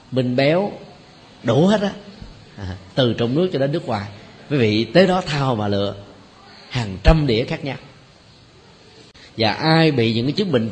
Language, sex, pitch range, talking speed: Vietnamese, male, 110-155 Hz, 180 wpm